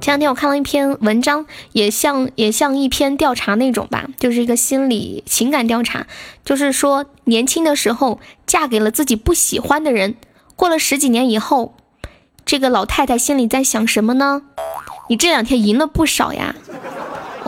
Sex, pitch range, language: female, 235-275 Hz, Chinese